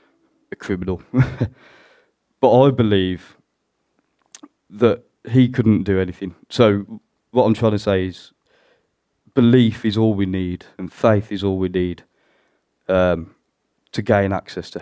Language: English